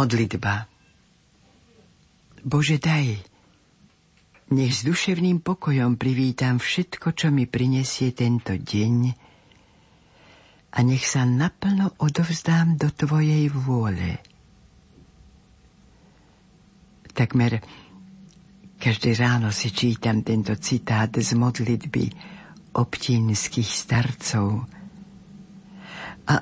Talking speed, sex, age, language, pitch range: 75 wpm, female, 60-79, Slovak, 120-165 Hz